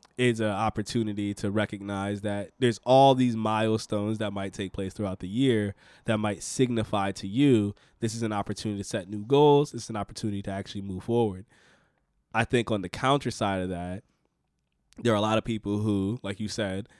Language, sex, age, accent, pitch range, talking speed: English, male, 20-39, American, 100-125 Hz, 195 wpm